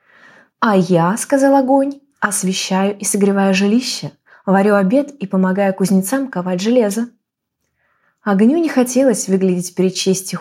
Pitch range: 195-250 Hz